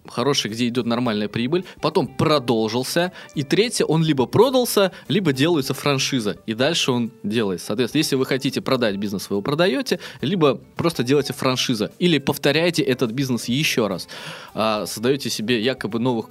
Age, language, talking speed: 20-39, Russian, 160 wpm